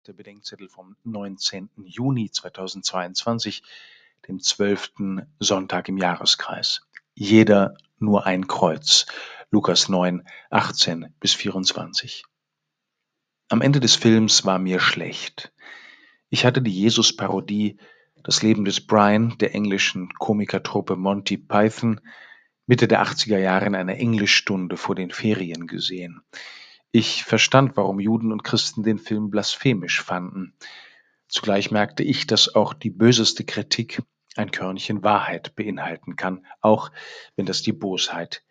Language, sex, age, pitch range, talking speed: German, male, 50-69, 95-115 Hz, 125 wpm